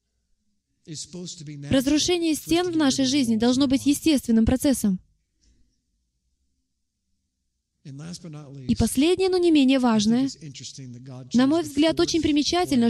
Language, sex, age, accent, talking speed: Russian, female, 20-39, native, 95 wpm